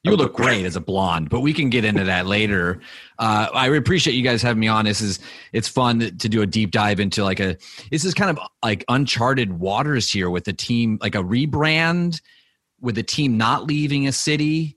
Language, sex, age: English, male, 30-49